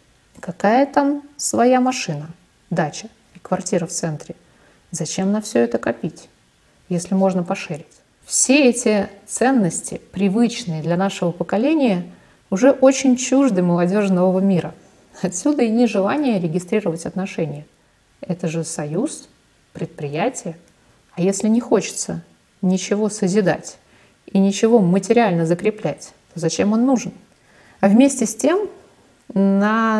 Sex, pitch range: female, 175-220 Hz